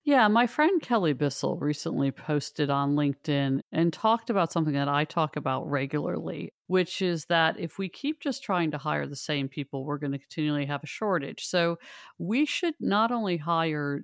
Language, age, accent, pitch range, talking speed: English, 50-69, American, 145-175 Hz, 190 wpm